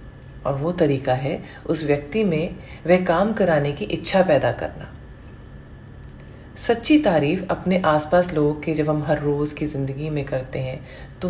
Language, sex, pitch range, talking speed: English, female, 140-180 Hz, 160 wpm